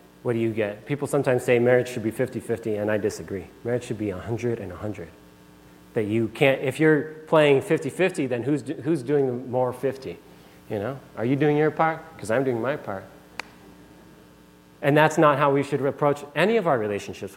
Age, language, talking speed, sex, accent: 30-49, English, 210 wpm, male, American